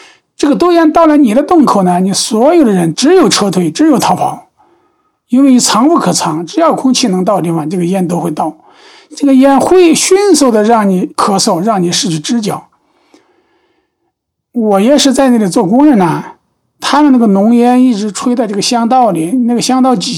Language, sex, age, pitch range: Chinese, male, 50-69, 175-260 Hz